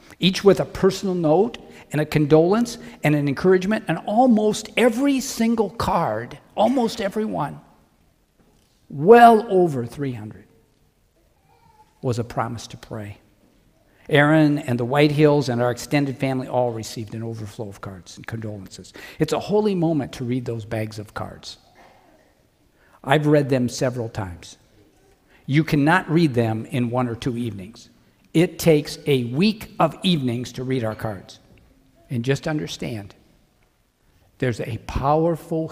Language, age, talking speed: English, 50-69, 140 wpm